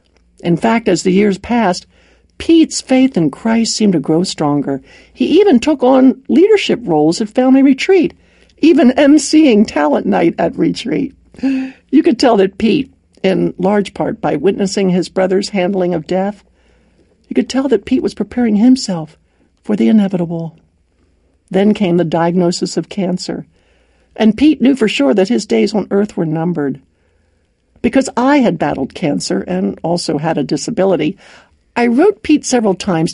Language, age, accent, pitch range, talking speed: English, 60-79, American, 180-245 Hz, 160 wpm